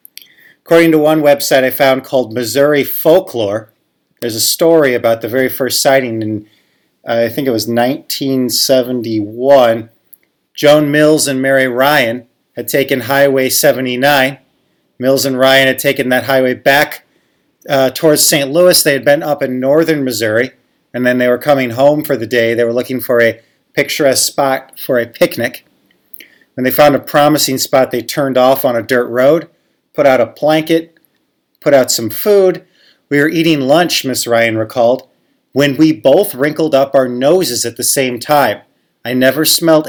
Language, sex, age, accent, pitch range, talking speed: English, male, 30-49, American, 125-155 Hz, 170 wpm